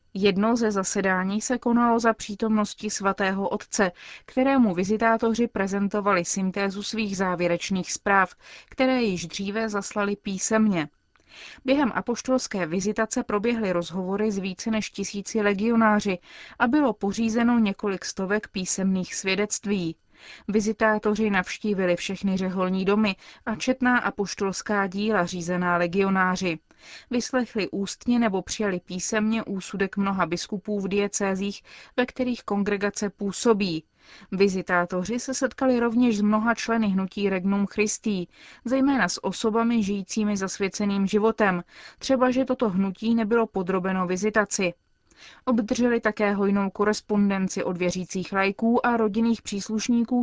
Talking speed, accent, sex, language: 115 wpm, native, female, Czech